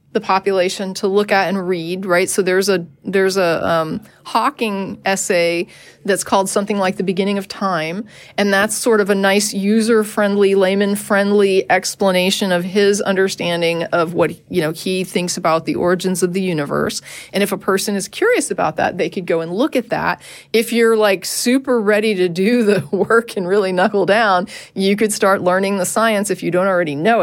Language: English